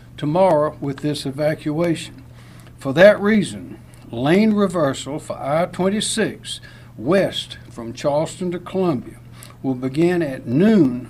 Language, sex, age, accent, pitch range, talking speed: English, male, 60-79, American, 130-170 Hz, 110 wpm